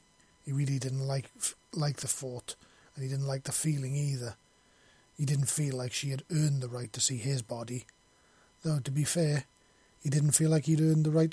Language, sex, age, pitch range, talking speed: English, male, 30-49, 130-150 Hz, 210 wpm